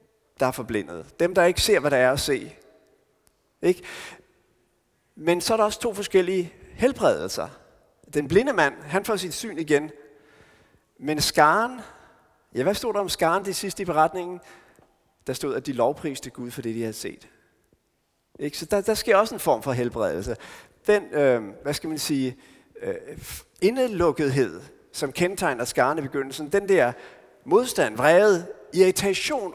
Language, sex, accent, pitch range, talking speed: Danish, male, native, 135-200 Hz, 160 wpm